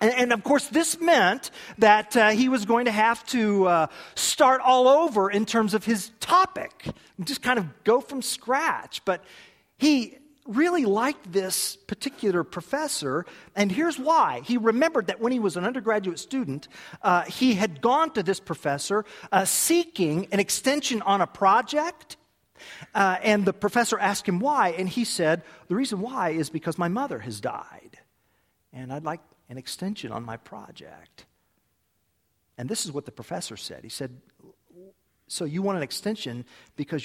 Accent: American